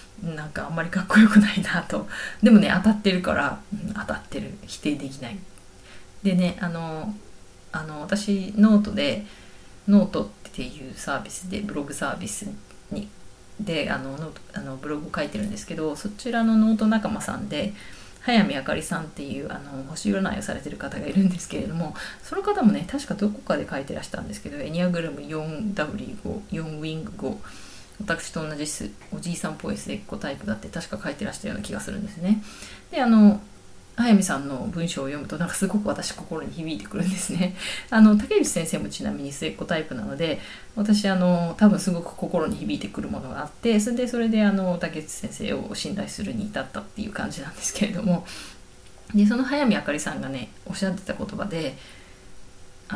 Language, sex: Japanese, female